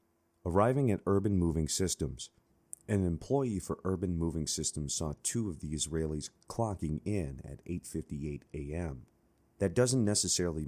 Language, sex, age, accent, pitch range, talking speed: English, male, 30-49, American, 75-90 Hz, 135 wpm